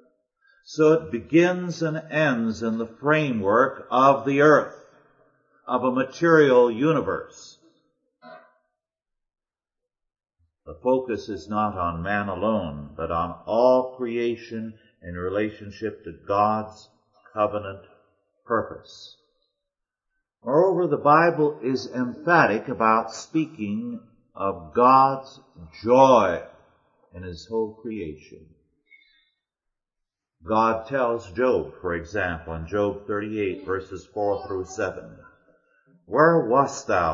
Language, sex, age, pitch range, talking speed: English, male, 50-69, 100-150 Hz, 100 wpm